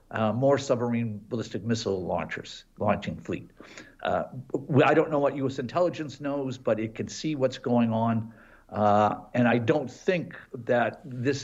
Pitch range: 110-140 Hz